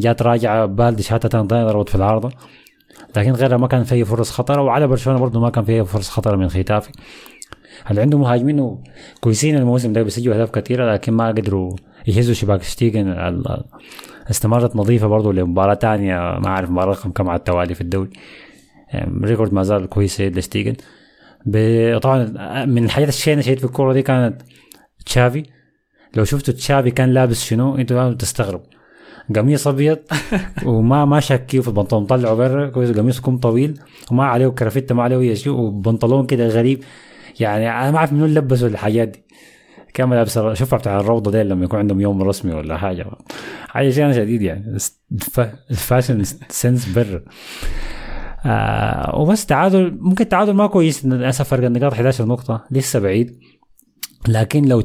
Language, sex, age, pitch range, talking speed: Arabic, male, 30-49, 105-130 Hz, 155 wpm